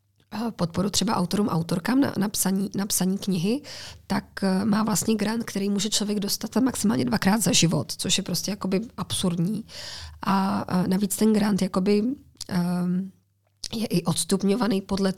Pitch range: 175-205 Hz